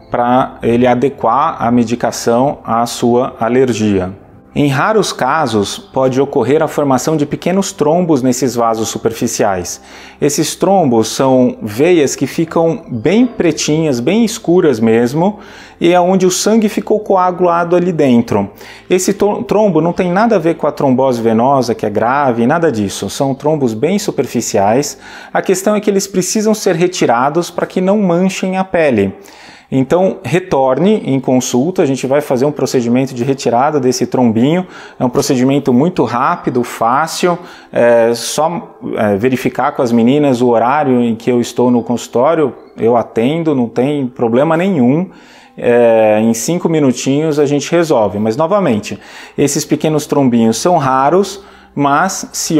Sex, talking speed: male, 145 wpm